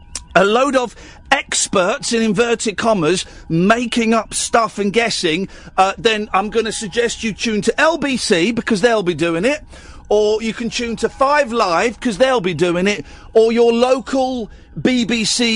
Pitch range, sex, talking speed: 185-275 Hz, male, 165 wpm